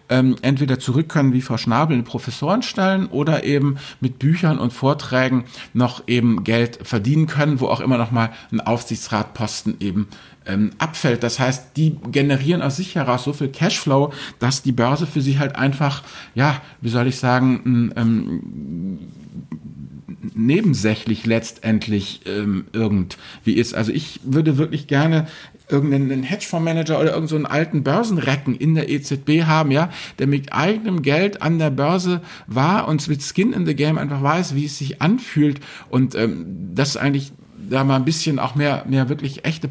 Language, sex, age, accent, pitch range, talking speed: German, male, 50-69, German, 125-150 Hz, 160 wpm